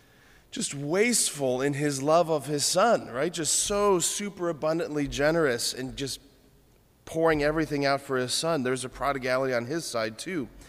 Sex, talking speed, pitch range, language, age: male, 165 wpm, 125-155 Hz, English, 30-49